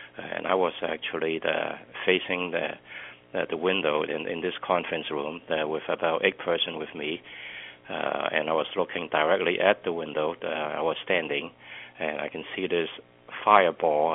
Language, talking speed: English, 170 wpm